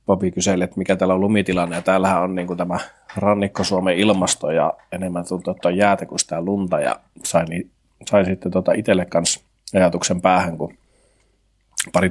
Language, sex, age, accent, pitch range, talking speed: Finnish, male, 30-49, native, 90-95 Hz, 165 wpm